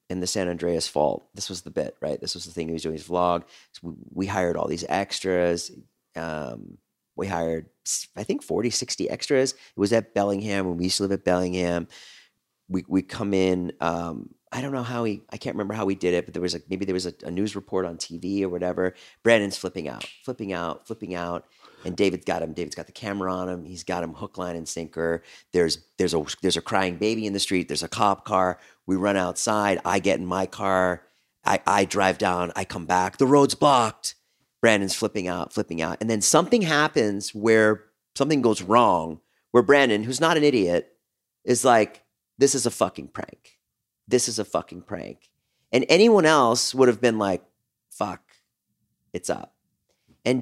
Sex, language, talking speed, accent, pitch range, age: male, English, 210 wpm, American, 90-115 Hz, 40-59